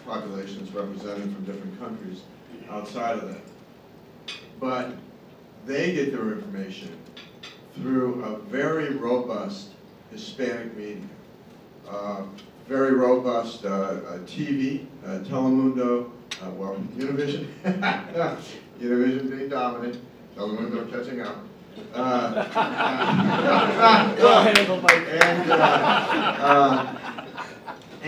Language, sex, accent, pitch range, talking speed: English, male, American, 105-140 Hz, 100 wpm